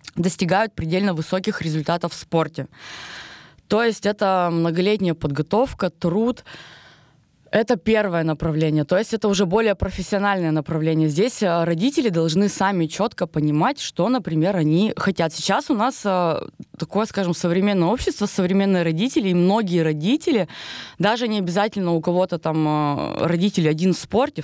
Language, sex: Russian, female